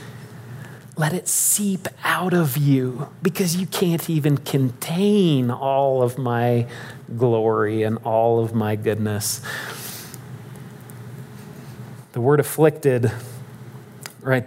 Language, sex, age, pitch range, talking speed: English, male, 30-49, 125-145 Hz, 100 wpm